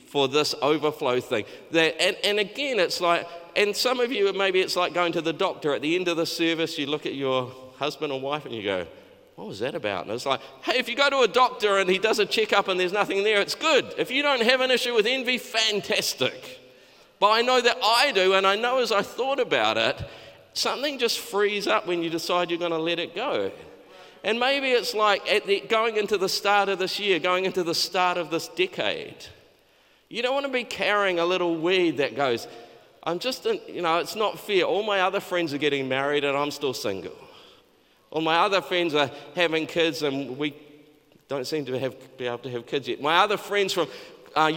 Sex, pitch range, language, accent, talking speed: male, 155-235 Hz, English, Australian, 225 wpm